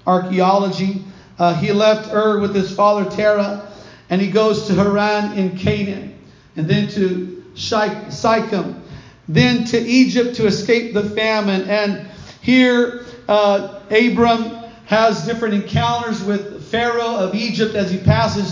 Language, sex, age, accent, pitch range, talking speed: English, male, 40-59, American, 200-230 Hz, 135 wpm